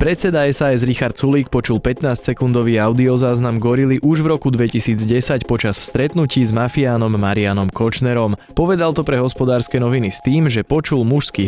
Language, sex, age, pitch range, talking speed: Slovak, male, 20-39, 105-140 Hz, 145 wpm